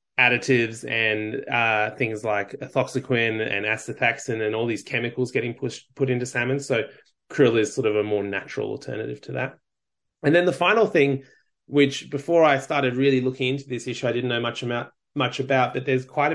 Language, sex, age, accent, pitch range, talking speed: English, male, 20-39, Australian, 115-140 Hz, 190 wpm